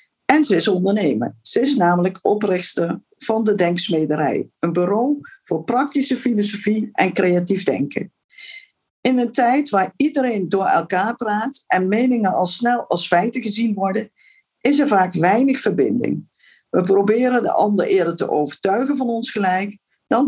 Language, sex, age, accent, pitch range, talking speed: Dutch, female, 50-69, Dutch, 185-260 Hz, 150 wpm